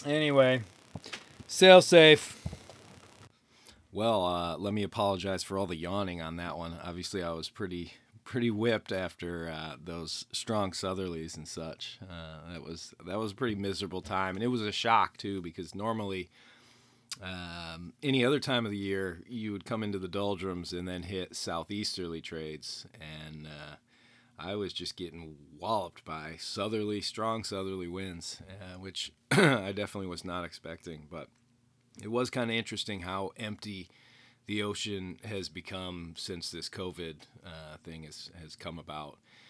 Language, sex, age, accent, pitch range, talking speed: English, male, 30-49, American, 85-110 Hz, 155 wpm